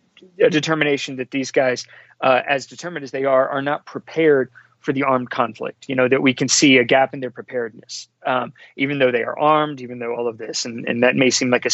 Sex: male